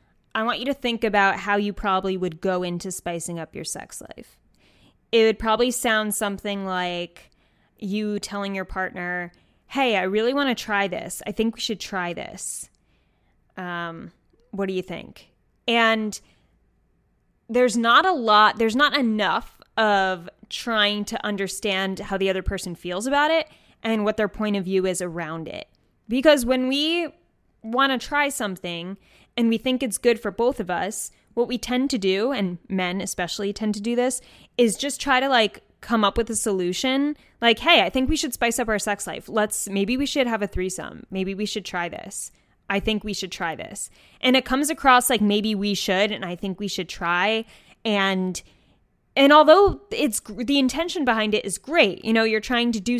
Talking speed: 190 wpm